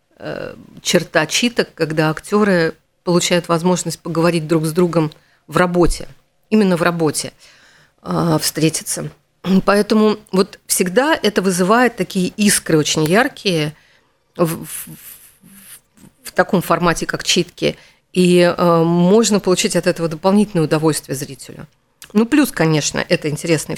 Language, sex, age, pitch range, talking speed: Russian, female, 40-59, 160-210 Hz, 115 wpm